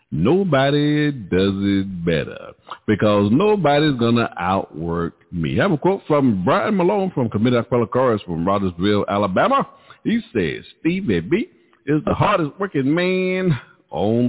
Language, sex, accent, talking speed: English, male, American, 145 wpm